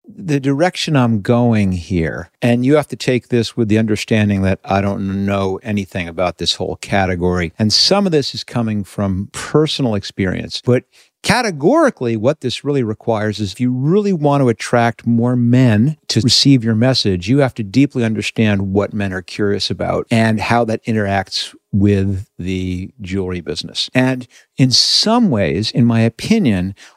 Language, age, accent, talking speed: English, 50-69, American, 170 wpm